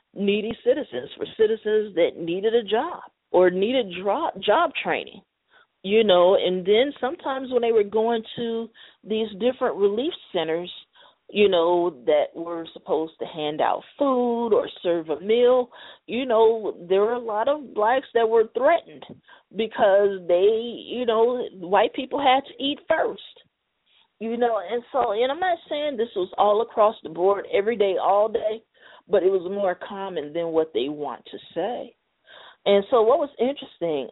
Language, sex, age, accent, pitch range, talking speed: English, female, 40-59, American, 185-265 Hz, 165 wpm